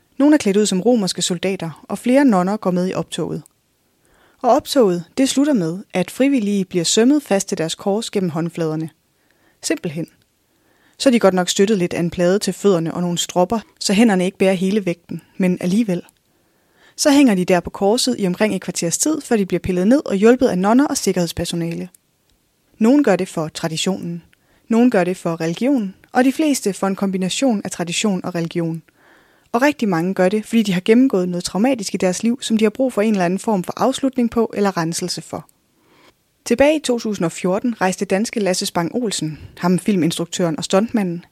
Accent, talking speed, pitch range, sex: native, 195 wpm, 175-230 Hz, female